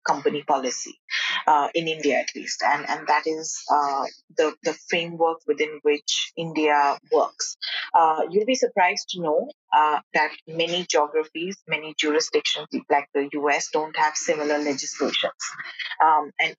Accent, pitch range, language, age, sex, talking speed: Indian, 145-175 Hz, English, 30-49, female, 145 wpm